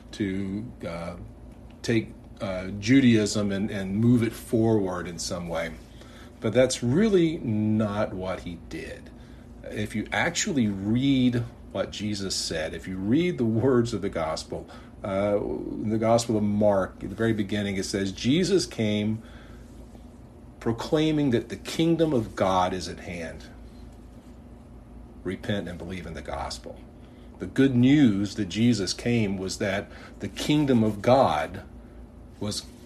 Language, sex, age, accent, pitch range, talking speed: English, male, 50-69, American, 95-120 Hz, 140 wpm